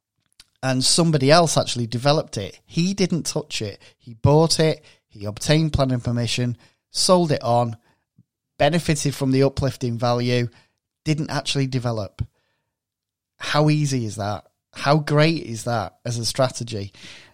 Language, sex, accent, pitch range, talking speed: English, male, British, 120-150 Hz, 135 wpm